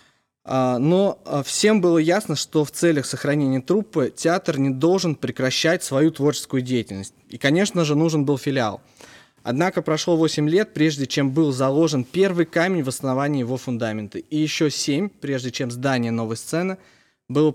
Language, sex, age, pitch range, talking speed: Russian, male, 20-39, 125-155 Hz, 155 wpm